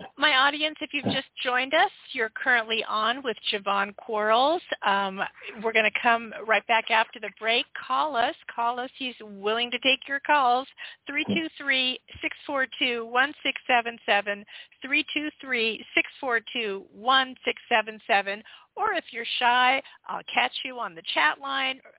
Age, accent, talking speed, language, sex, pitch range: 50-69, American, 125 wpm, English, female, 210-265 Hz